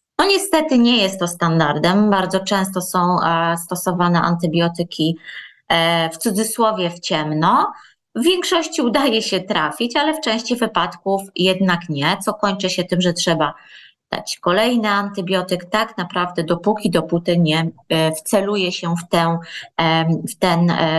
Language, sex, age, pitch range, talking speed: Polish, female, 20-39, 165-200 Hz, 125 wpm